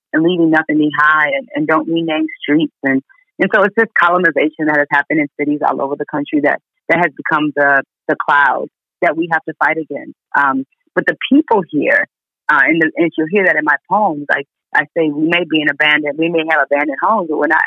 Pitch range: 145-175 Hz